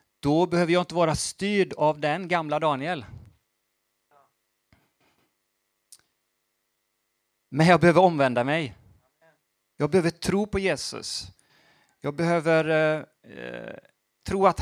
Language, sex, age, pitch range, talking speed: Swedish, male, 30-49, 115-155 Hz, 100 wpm